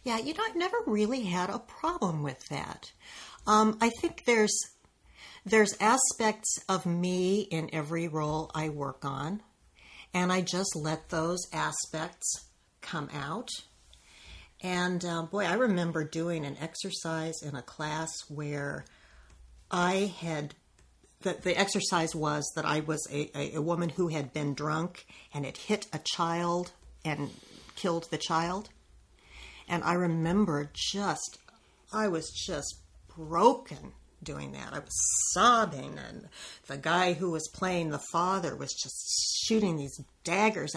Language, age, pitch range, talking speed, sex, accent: English, 50-69, 155-195 Hz, 140 wpm, female, American